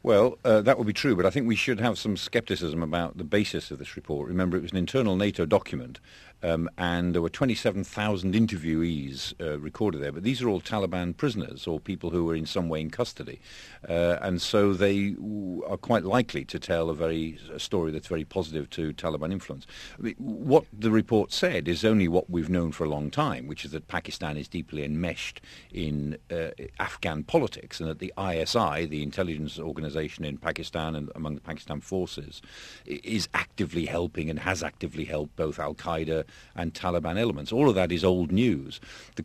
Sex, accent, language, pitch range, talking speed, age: male, British, English, 80-105 Hz, 200 wpm, 50-69